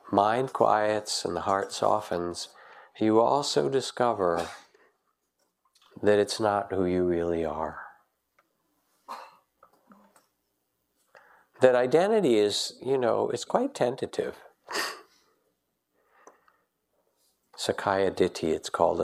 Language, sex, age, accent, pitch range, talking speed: English, male, 50-69, American, 90-110 Hz, 90 wpm